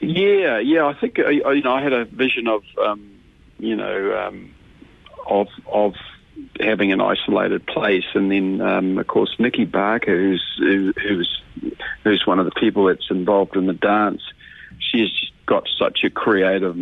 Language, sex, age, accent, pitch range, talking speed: English, male, 50-69, Australian, 95-105 Hz, 170 wpm